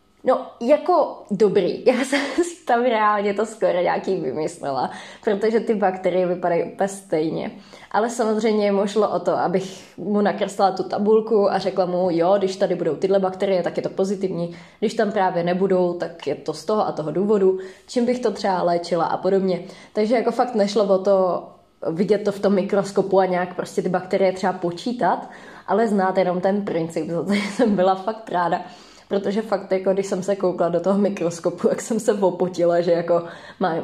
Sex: female